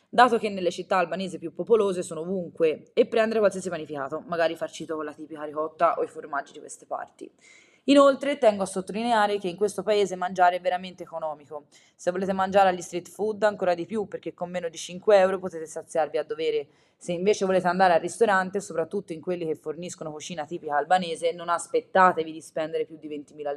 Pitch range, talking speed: 165-210 Hz, 195 wpm